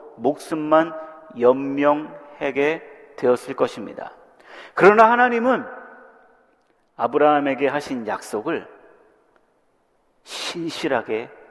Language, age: Korean, 40-59